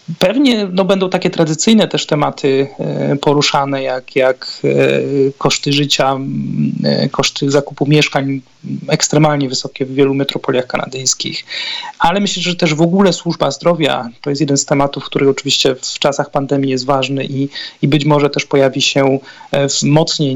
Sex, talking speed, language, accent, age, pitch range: male, 140 wpm, Polish, native, 30-49, 135-150 Hz